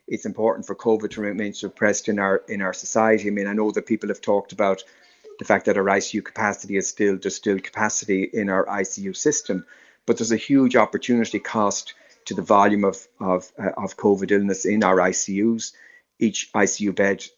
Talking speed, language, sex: 195 wpm, English, male